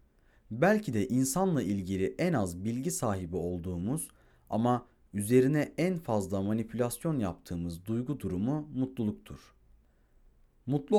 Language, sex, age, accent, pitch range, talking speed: Turkish, male, 40-59, native, 100-140 Hz, 105 wpm